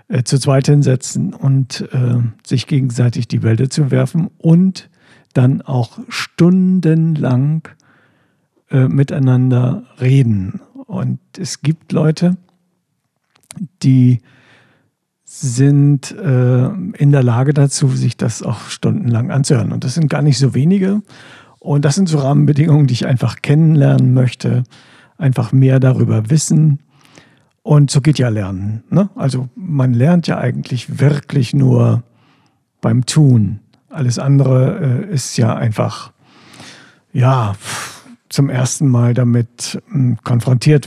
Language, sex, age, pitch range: German, male, 60-79, 125-155 Hz